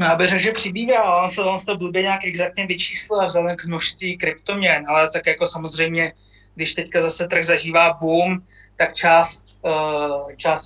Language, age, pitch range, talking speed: Czech, 20-39, 150-170 Hz, 170 wpm